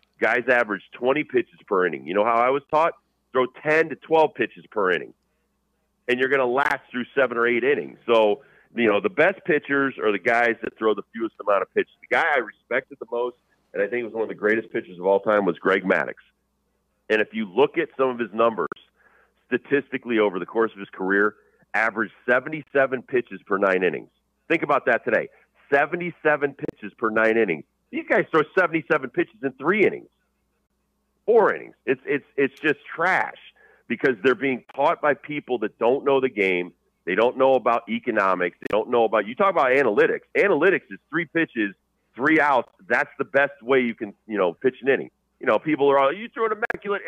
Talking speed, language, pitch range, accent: 210 wpm, English, 115-175 Hz, American